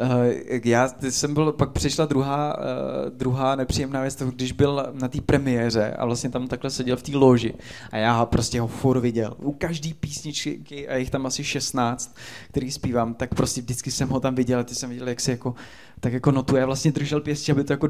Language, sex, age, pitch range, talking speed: Czech, male, 20-39, 120-140 Hz, 220 wpm